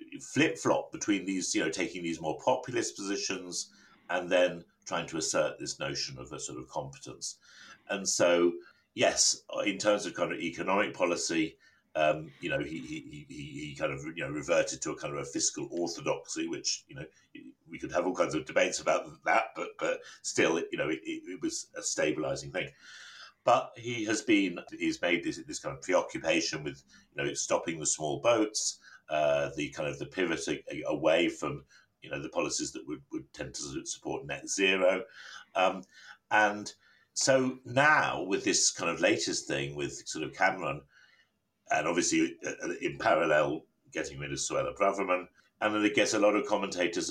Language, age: English, 50-69